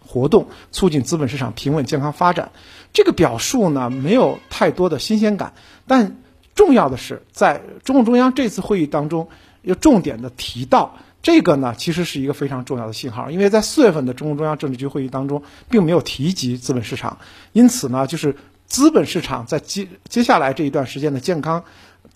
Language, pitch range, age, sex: Chinese, 135-195 Hz, 50-69, male